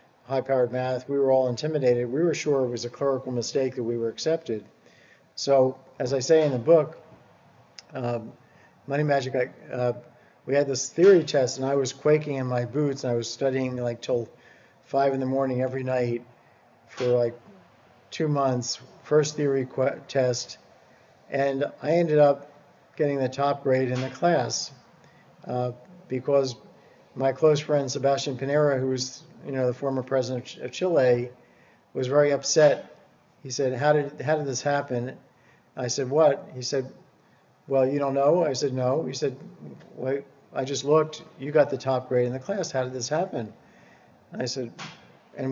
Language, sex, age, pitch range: English, male, 50-69, 125-145 Hz